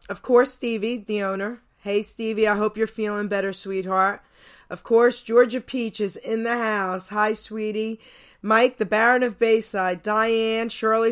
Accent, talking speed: American, 160 wpm